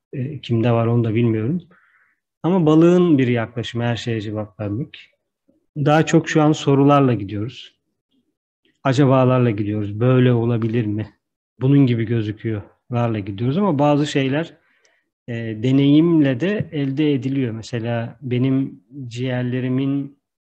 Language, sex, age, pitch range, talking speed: Turkish, male, 40-59, 125-150 Hz, 115 wpm